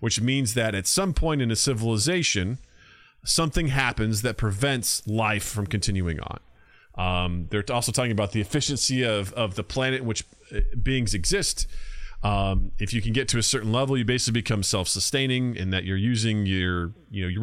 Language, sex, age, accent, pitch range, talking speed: English, male, 30-49, American, 100-130 Hz, 185 wpm